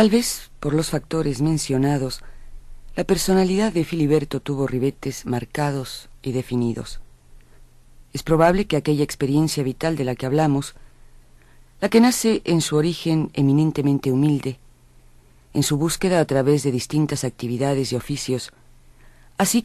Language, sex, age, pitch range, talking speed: Spanish, female, 40-59, 125-160 Hz, 135 wpm